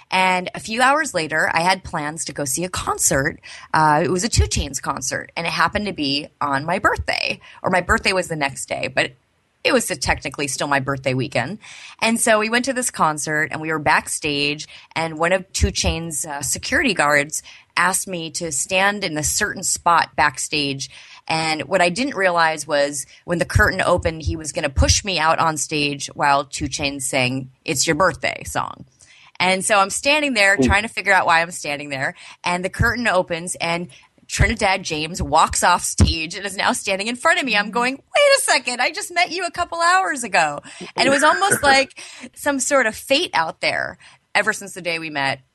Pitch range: 150-205 Hz